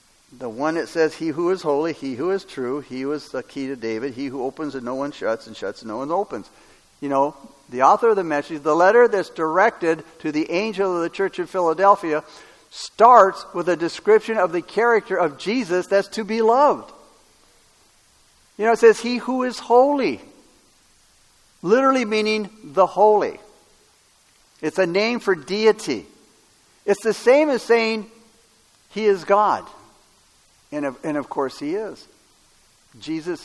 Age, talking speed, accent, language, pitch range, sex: 60-79, 170 wpm, American, English, 165-230 Hz, male